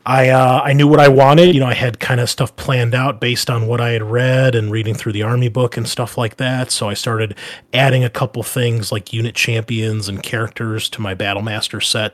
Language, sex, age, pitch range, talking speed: Danish, male, 30-49, 110-130 Hz, 240 wpm